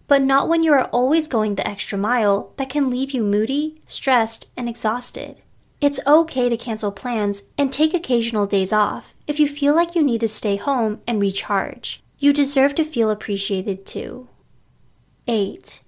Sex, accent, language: female, American, English